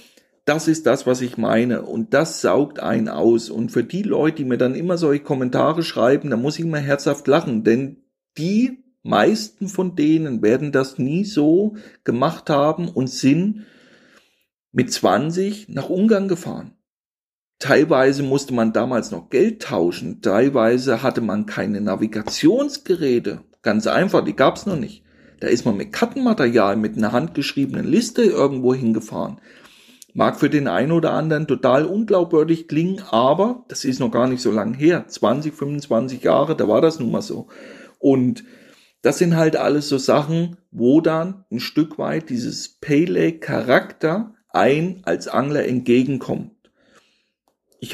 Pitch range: 125-180 Hz